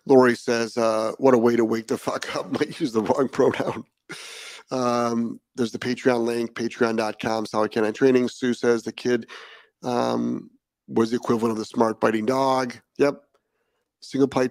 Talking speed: 165 wpm